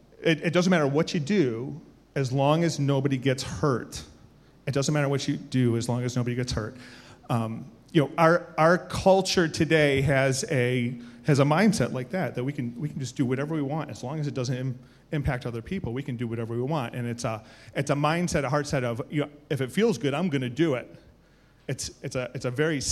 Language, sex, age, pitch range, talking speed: English, male, 30-49, 120-145 Hz, 240 wpm